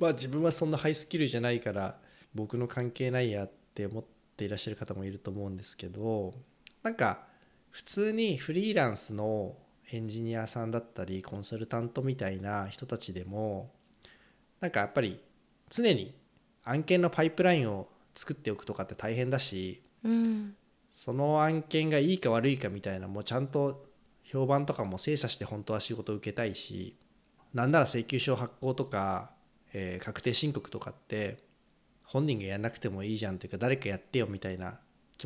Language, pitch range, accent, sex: Japanese, 110-160 Hz, native, male